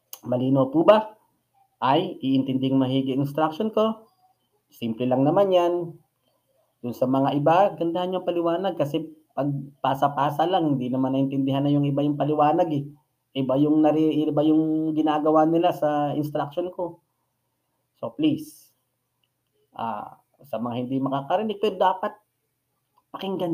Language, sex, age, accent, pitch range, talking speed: Filipino, male, 20-39, native, 130-155 Hz, 125 wpm